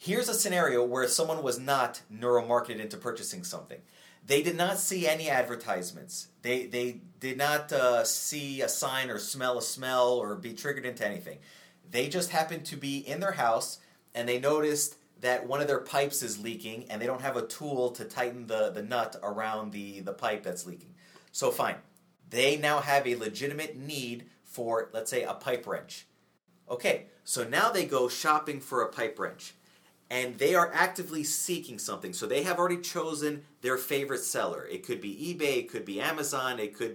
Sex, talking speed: male, 190 wpm